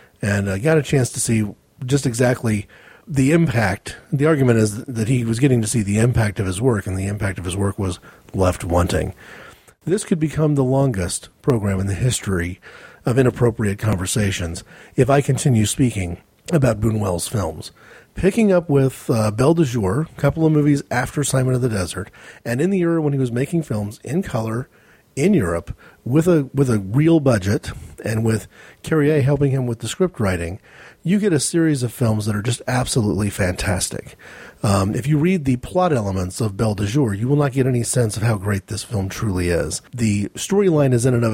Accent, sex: American, male